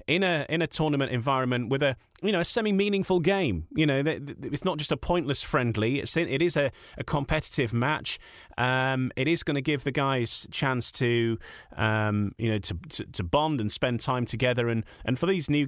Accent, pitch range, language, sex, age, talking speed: British, 110-140 Hz, English, male, 30-49, 220 wpm